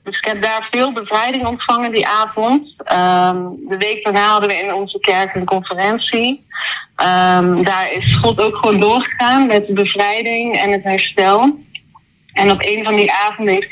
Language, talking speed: Dutch, 175 wpm